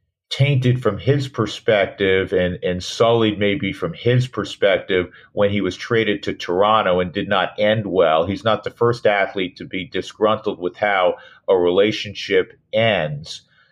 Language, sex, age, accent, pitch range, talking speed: English, male, 50-69, American, 100-130 Hz, 155 wpm